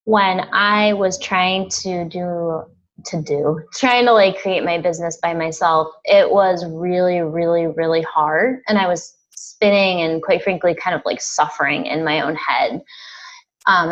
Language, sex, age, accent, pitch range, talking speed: English, female, 20-39, American, 170-210 Hz, 165 wpm